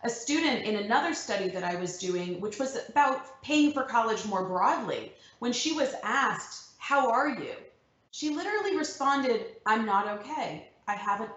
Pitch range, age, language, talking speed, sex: 205-300 Hz, 30-49, English, 170 wpm, female